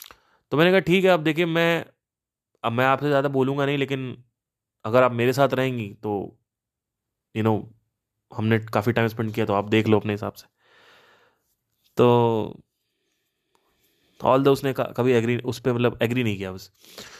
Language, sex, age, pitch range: Hindi, male, 20-39, 110-150 Hz